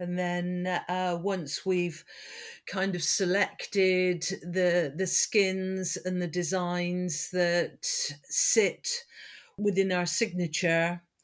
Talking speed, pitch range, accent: 100 wpm, 180-200 Hz, British